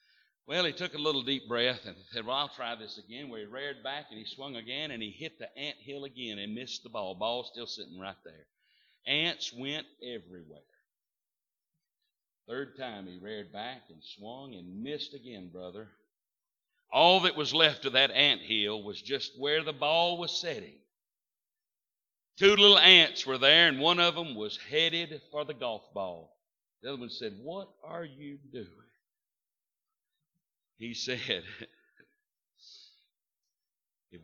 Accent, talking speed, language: American, 160 wpm, English